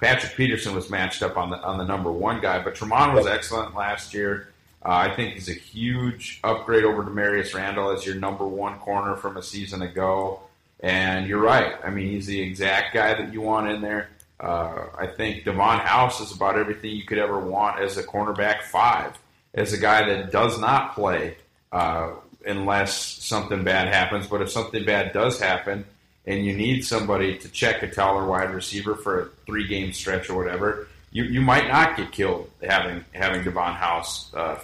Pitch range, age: 95-110 Hz, 30-49